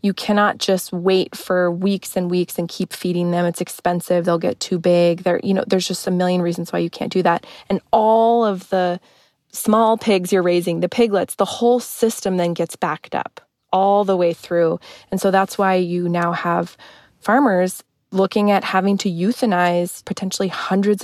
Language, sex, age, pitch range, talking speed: English, female, 20-39, 175-200 Hz, 190 wpm